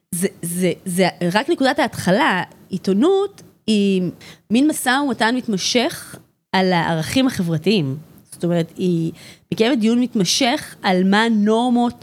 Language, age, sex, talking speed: Hebrew, 20-39, female, 120 wpm